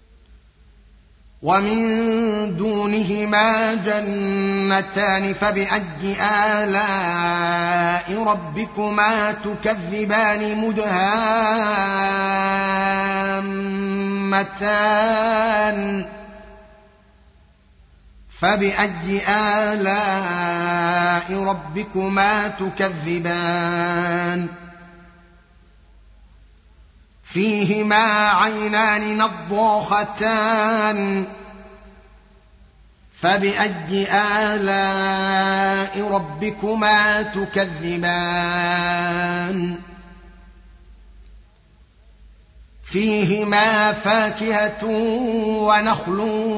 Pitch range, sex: 175-210 Hz, male